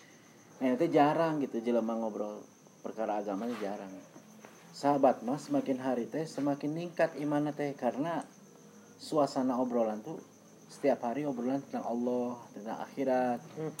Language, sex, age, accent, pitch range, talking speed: Indonesian, male, 40-59, native, 120-155 Hz, 130 wpm